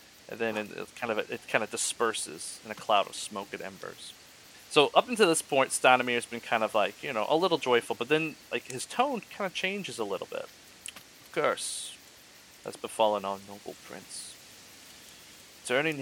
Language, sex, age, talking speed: English, male, 30-49, 185 wpm